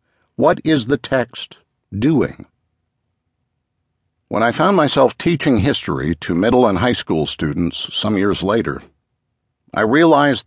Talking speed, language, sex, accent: 125 wpm, English, male, American